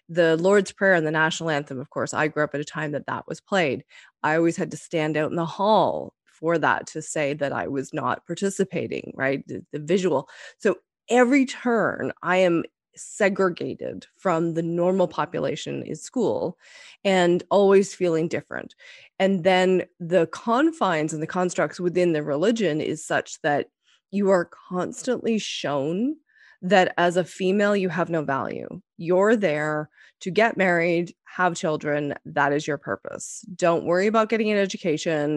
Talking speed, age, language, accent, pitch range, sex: 170 wpm, 30-49, English, American, 155-195 Hz, female